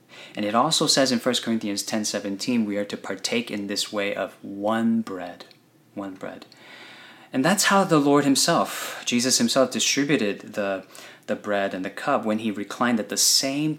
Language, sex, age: English, male, 30-49